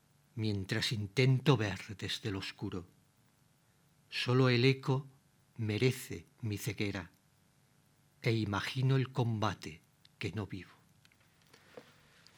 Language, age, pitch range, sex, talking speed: Spanish, 50-69, 115-145 Hz, male, 90 wpm